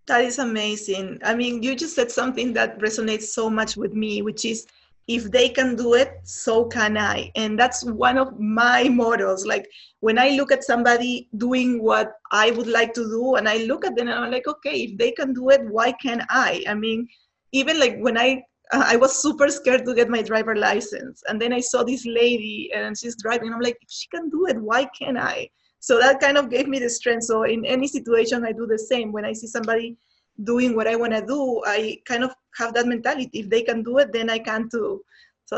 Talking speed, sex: 235 wpm, female